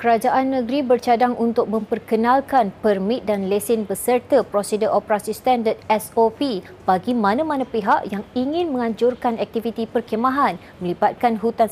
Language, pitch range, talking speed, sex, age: Malay, 215-255 Hz, 120 wpm, female, 20-39